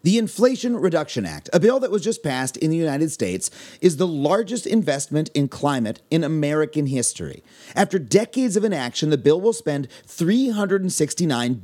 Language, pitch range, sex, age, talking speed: English, 145-210 Hz, male, 30-49, 165 wpm